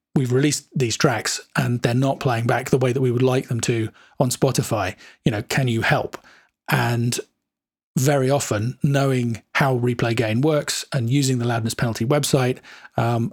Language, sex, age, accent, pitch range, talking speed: English, male, 30-49, British, 120-145 Hz, 175 wpm